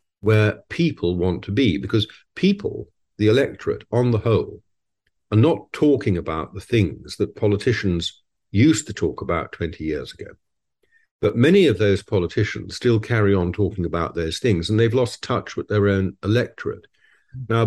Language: English